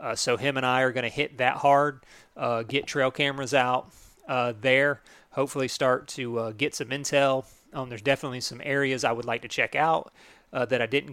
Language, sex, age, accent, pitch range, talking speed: English, male, 30-49, American, 125-145 Hz, 215 wpm